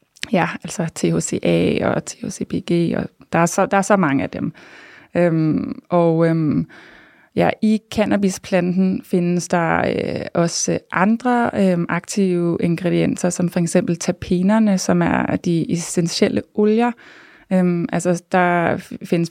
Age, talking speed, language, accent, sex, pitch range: 20-39, 130 wpm, Danish, native, female, 170-200 Hz